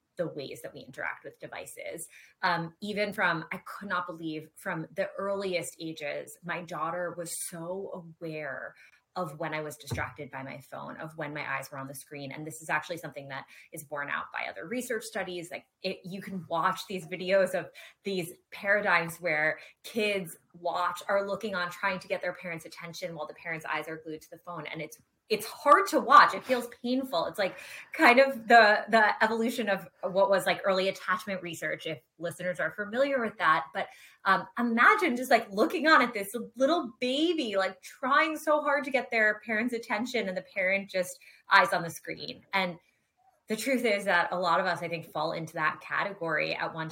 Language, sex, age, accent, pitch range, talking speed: English, female, 20-39, American, 165-215 Hz, 200 wpm